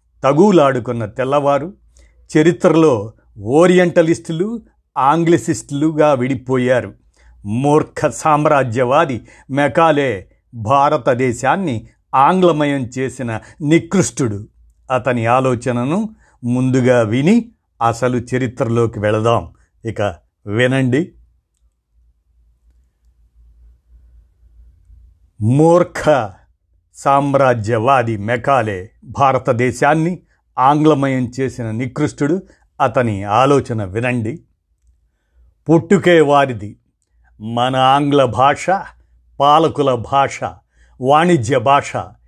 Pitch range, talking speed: 110-150 Hz, 60 wpm